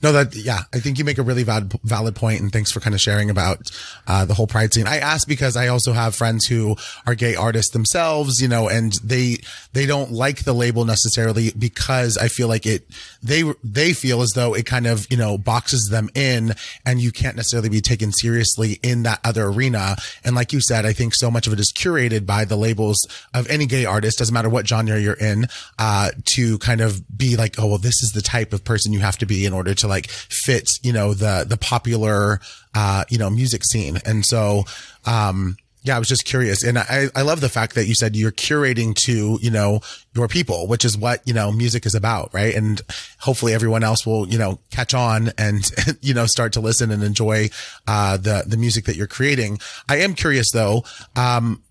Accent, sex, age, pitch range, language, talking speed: American, male, 30-49, 105-120 Hz, English, 225 wpm